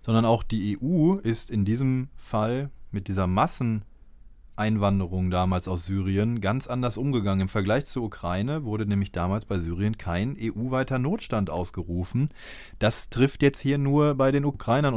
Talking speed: 150 wpm